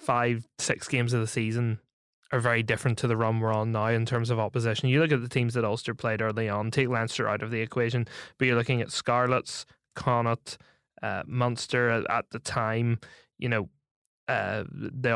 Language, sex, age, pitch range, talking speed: English, male, 20-39, 120-135 Hz, 200 wpm